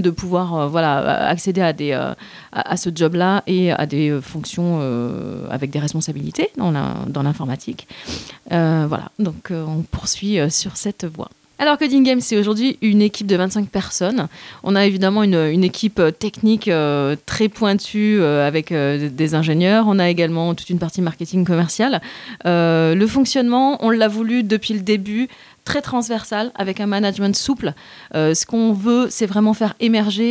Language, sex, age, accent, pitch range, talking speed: French, female, 30-49, French, 165-215 Hz, 170 wpm